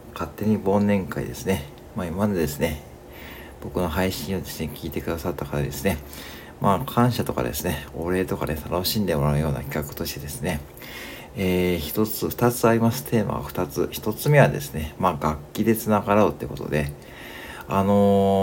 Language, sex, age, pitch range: Japanese, male, 60-79, 75-100 Hz